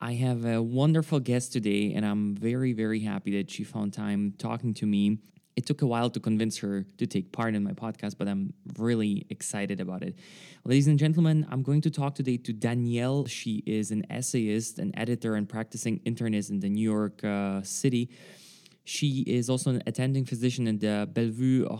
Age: 20-39